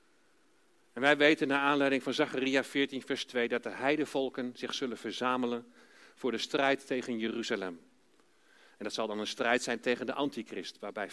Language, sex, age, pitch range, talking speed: Dutch, male, 50-69, 135-195 Hz, 175 wpm